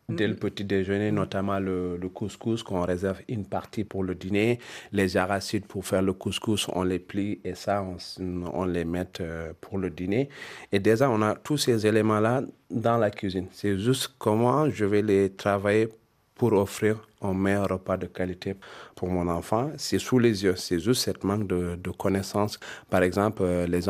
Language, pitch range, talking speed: French, 90-110 Hz, 185 wpm